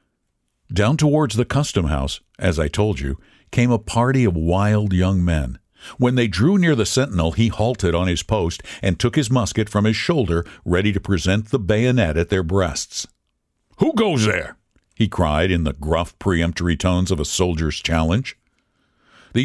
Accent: American